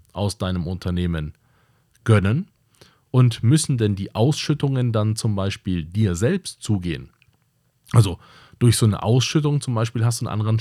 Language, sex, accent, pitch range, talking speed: German, male, German, 100-120 Hz, 145 wpm